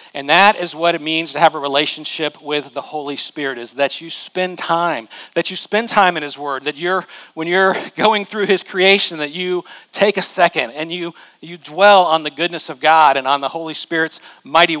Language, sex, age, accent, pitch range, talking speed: English, male, 40-59, American, 150-185 Hz, 220 wpm